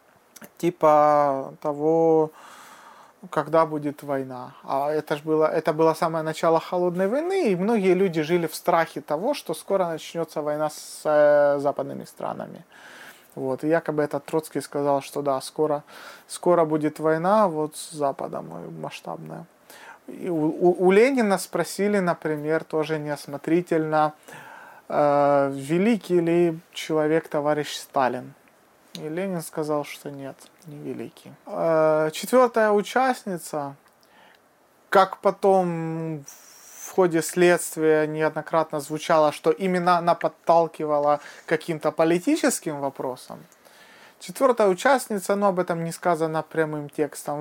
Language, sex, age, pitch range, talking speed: Russian, male, 30-49, 150-180 Hz, 110 wpm